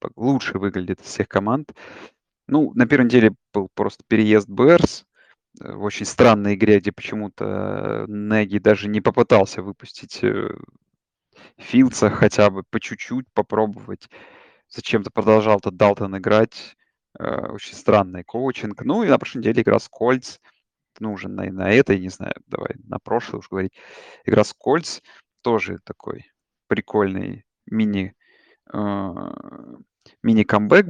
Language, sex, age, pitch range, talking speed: Russian, male, 30-49, 100-115 Hz, 125 wpm